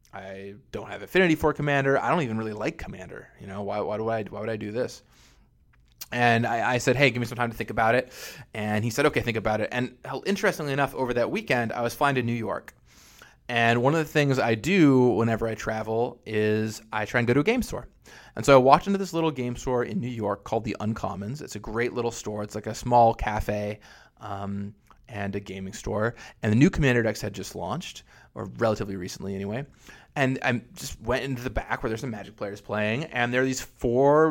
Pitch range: 110-140 Hz